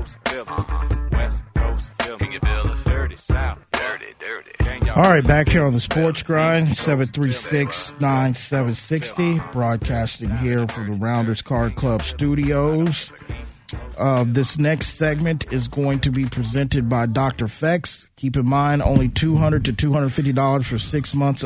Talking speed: 110 wpm